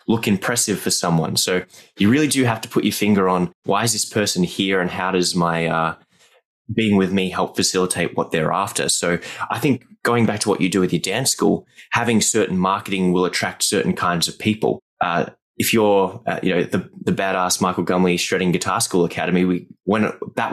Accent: Australian